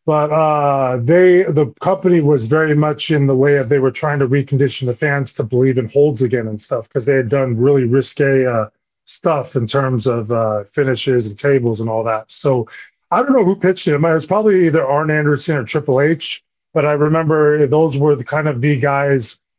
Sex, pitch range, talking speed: male, 130-155 Hz, 215 wpm